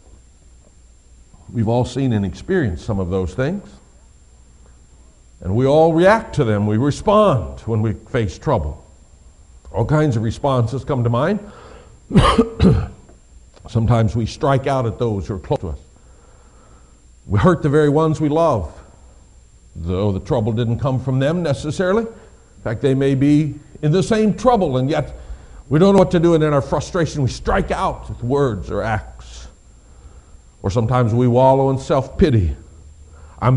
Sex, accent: male, American